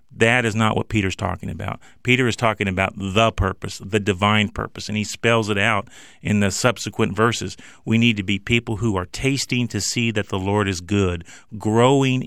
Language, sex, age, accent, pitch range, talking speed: English, male, 40-59, American, 105-140 Hz, 200 wpm